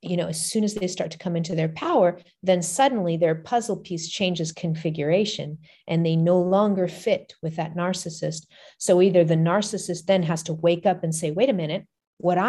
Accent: American